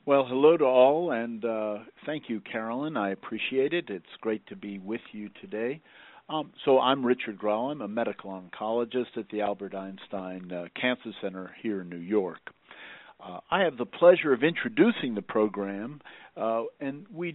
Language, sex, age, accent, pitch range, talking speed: English, male, 50-69, American, 105-155 Hz, 175 wpm